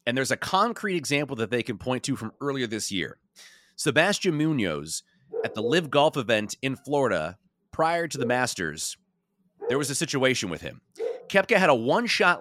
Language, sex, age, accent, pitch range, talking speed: English, male, 30-49, American, 130-190 Hz, 180 wpm